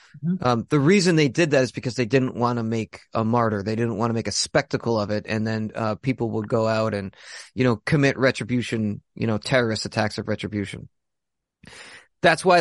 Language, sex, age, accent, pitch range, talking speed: English, male, 30-49, American, 115-145 Hz, 210 wpm